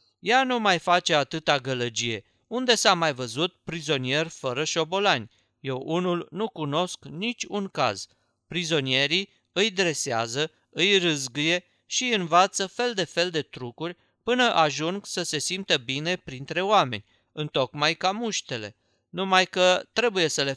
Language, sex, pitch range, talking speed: Romanian, male, 140-190 Hz, 135 wpm